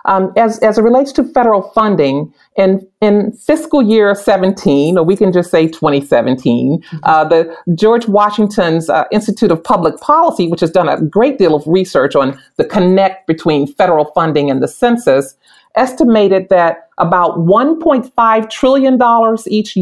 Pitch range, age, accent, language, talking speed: 165-225 Hz, 40-59, American, English, 155 wpm